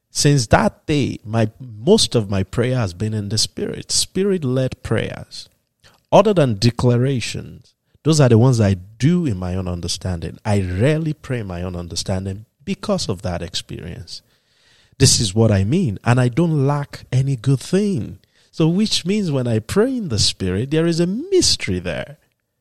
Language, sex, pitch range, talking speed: English, male, 95-135 Hz, 175 wpm